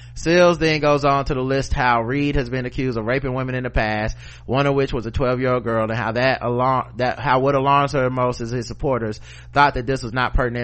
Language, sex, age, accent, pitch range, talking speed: English, male, 30-49, American, 115-135 Hz, 260 wpm